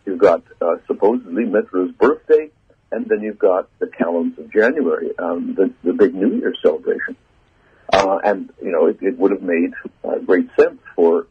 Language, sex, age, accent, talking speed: English, male, 60-79, American, 180 wpm